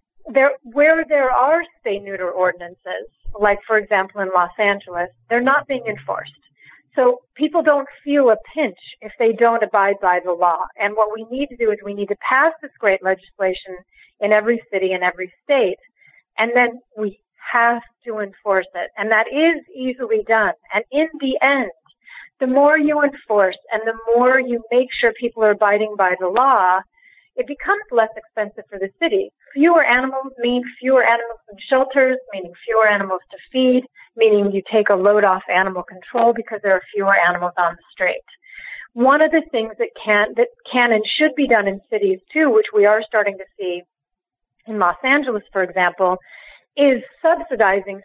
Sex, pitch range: female, 195-265 Hz